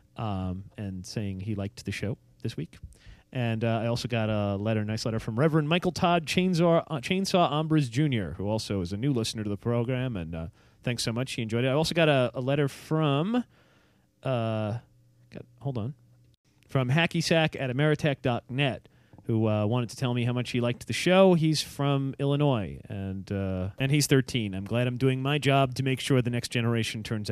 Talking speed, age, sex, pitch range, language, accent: 200 wpm, 30-49, male, 110-145 Hz, English, American